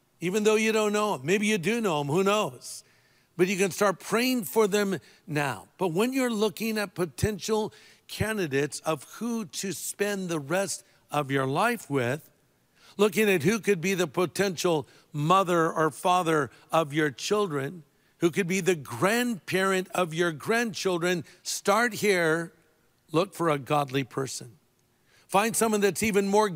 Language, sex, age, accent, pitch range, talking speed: English, male, 60-79, American, 150-195 Hz, 160 wpm